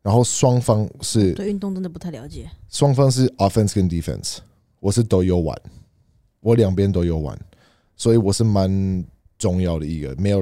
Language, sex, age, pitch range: Chinese, male, 20-39, 85-110 Hz